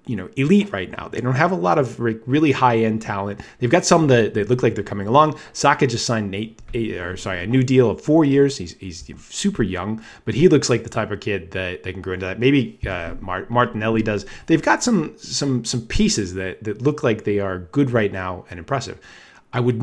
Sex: male